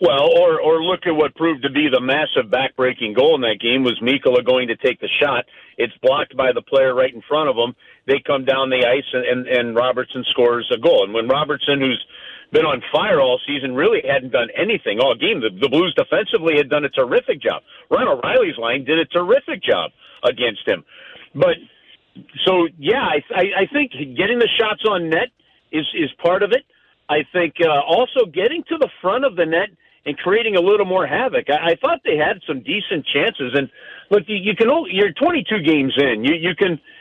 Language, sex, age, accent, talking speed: English, male, 50-69, American, 215 wpm